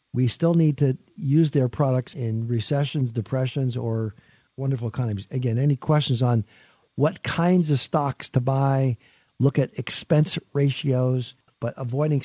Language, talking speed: English, 140 wpm